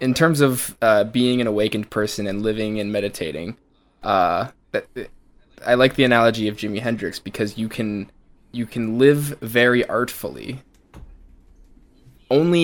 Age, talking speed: 20-39, 140 wpm